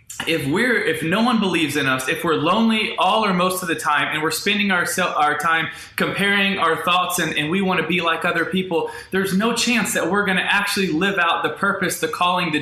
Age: 20-39